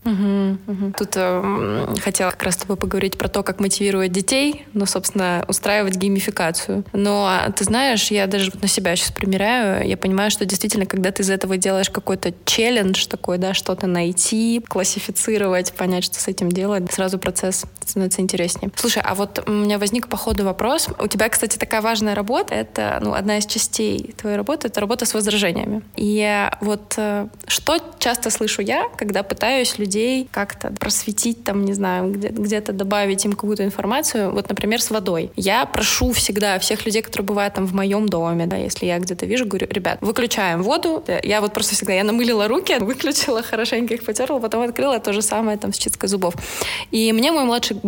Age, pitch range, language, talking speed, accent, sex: 20-39, 195-225 Hz, Russian, 190 wpm, native, female